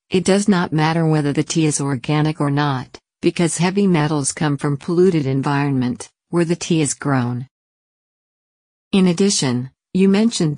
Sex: female